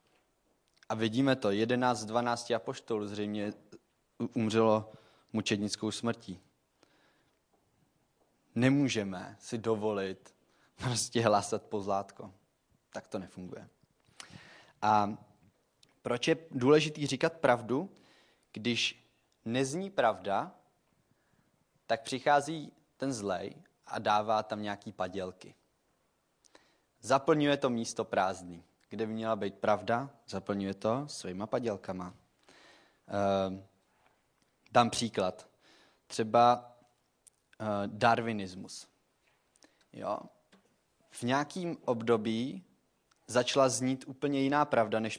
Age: 20-39